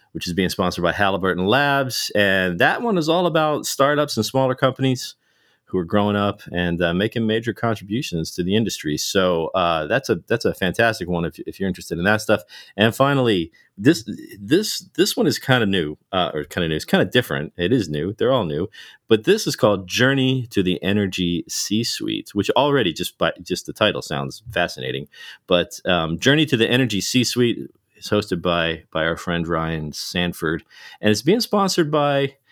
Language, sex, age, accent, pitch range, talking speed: English, male, 40-59, American, 90-120 Hz, 200 wpm